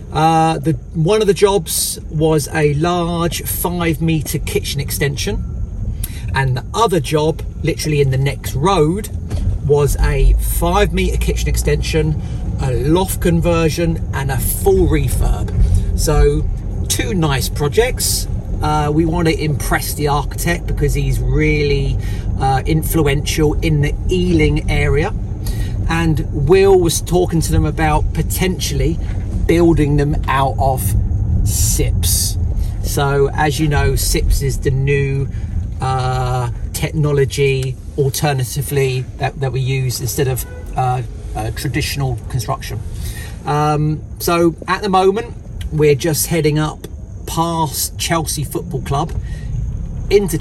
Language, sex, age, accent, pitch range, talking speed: English, male, 40-59, British, 100-155 Hz, 125 wpm